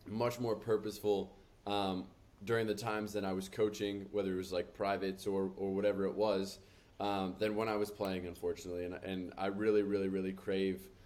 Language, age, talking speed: English, 20-39, 190 wpm